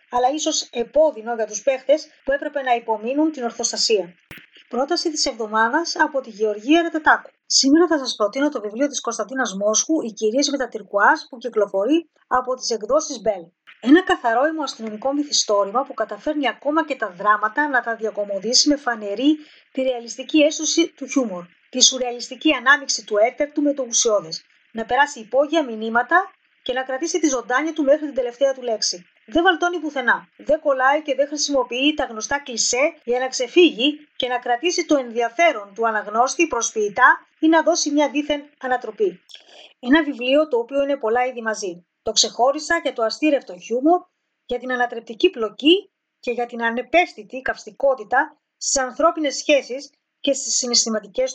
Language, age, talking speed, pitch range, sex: Greek, 20-39, 160 wpm, 230-300 Hz, female